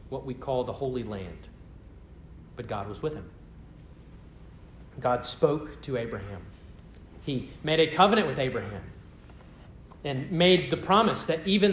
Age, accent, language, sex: 30-49, American, English, male